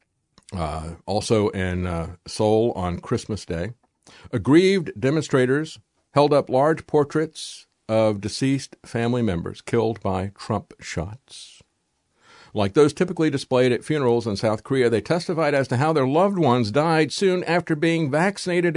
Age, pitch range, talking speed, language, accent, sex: 50-69, 105-150 Hz, 140 wpm, English, American, male